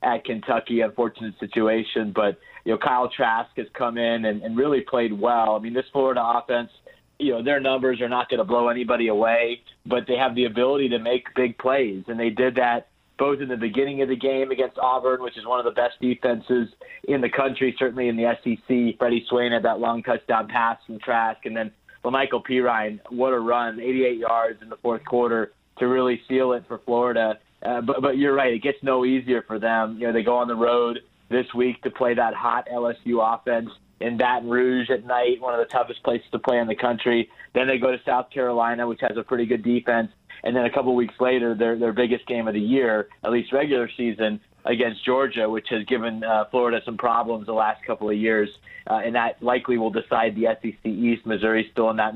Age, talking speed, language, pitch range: 30-49, 225 wpm, English, 115-125 Hz